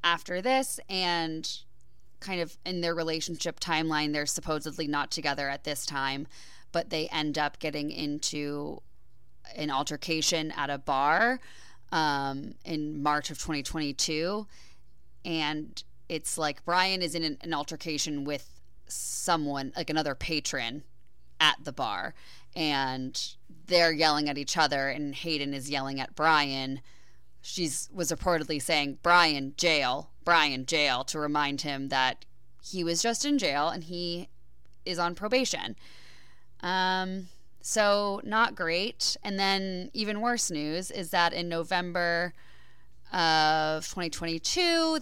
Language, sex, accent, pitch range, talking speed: English, female, American, 140-175 Hz, 130 wpm